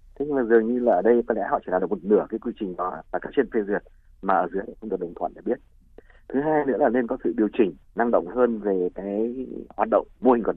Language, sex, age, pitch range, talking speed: Vietnamese, male, 30-49, 105-145 Hz, 290 wpm